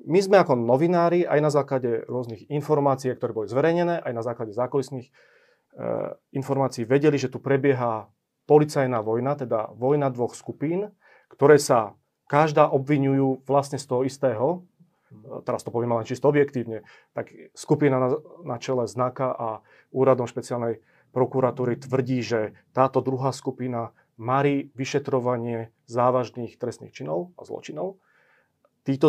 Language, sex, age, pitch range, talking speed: Slovak, male, 30-49, 125-145 Hz, 130 wpm